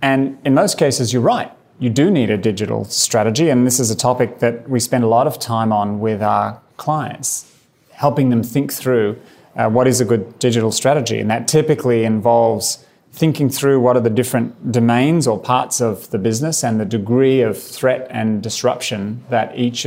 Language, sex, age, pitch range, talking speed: English, male, 30-49, 110-125 Hz, 195 wpm